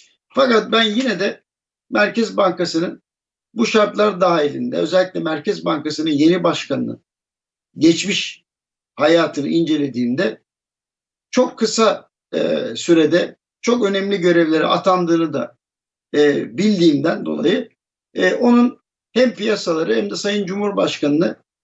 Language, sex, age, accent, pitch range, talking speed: Turkish, male, 50-69, native, 175-215 Hz, 105 wpm